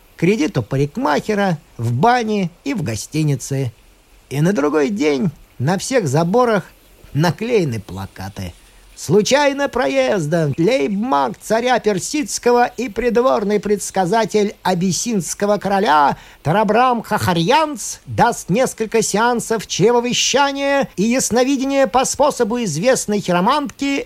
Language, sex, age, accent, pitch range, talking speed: Russian, male, 50-69, native, 165-265 Hz, 95 wpm